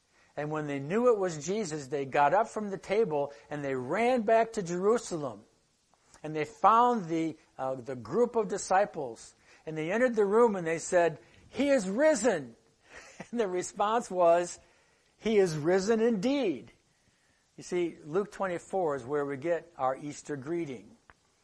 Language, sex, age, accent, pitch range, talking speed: English, male, 60-79, American, 135-185 Hz, 160 wpm